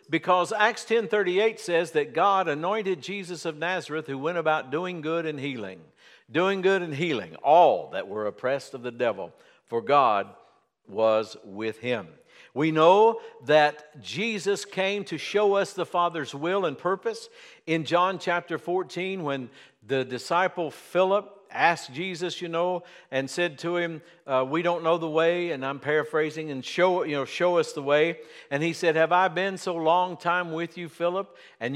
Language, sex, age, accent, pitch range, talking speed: English, male, 60-79, American, 155-190 Hz, 170 wpm